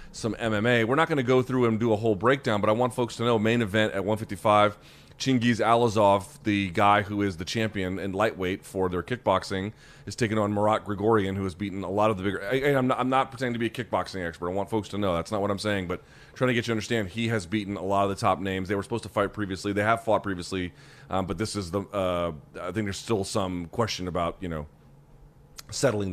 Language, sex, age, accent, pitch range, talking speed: English, male, 30-49, American, 100-120 Hz, 255 wpm